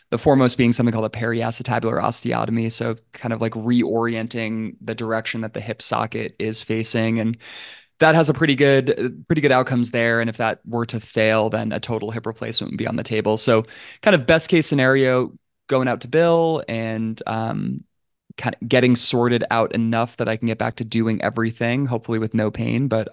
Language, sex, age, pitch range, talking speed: English, male, 20-39, 110-125 Hz, 200 wpm